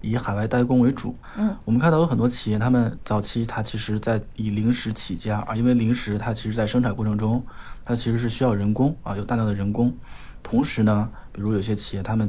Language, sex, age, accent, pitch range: Chinese, male, 20-39, native, 105-125 Hz